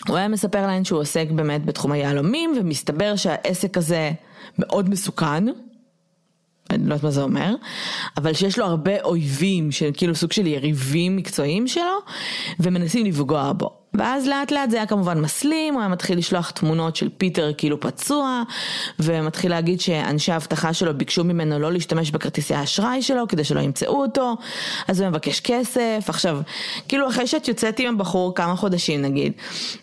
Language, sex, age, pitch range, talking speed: Hebrew, female, 20-39, 160-210 Hz, 165 wpm